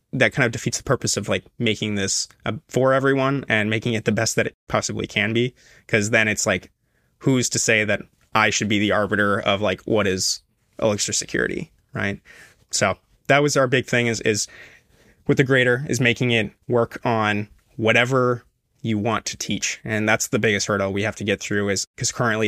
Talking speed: 205 wpm